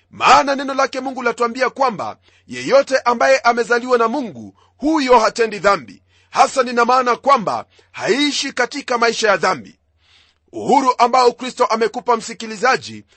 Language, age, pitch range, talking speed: Swahili, 40-59, 215-260 Hz, 130 wpm